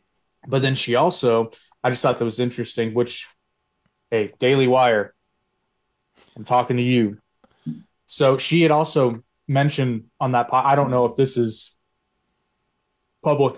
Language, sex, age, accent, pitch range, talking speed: English, male, 20-39, American, 115-130 Hz, 140 wpm